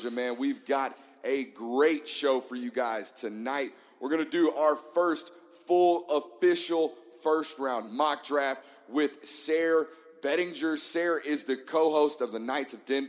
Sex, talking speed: male, 155 wpm